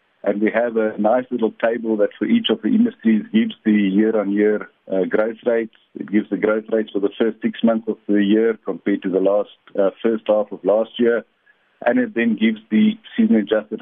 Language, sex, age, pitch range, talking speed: English, male, 50-69, 105-125 Hz, 205 wpm